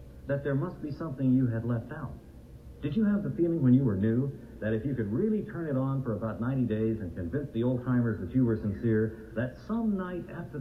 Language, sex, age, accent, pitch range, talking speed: English, male, 60-79, American, 110-140 Hz, 245 wpm